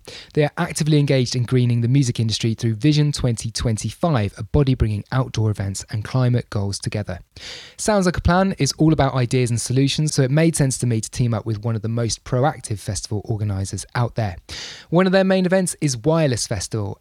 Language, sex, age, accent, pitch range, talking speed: English, male, 20-39, British, 110-140 Hz, 205 wpm